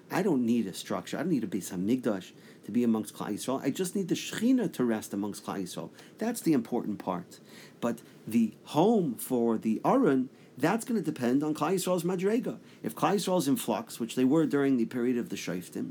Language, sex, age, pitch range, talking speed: English, male, 40-59, 115-160 Hz, 225 wpm